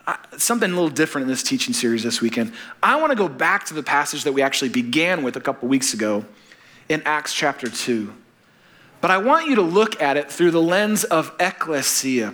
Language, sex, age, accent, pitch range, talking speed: English, male, 30-49, American, 155-190 Hz, 220 wpm